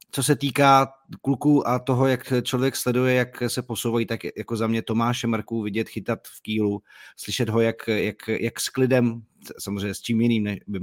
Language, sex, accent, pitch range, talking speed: Czech, male, native, 110-125 Hz, 190 wpm